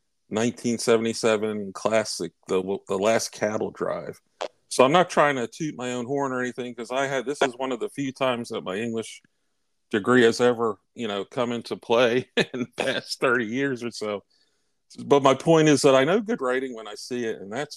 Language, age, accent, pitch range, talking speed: English, 40-59, American, 105-125 Hz, 205 wpm